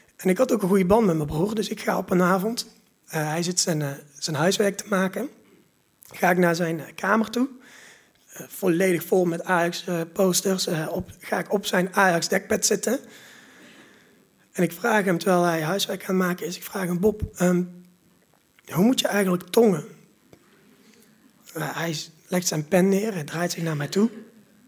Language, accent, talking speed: Dutch, Dutch, 180 wpm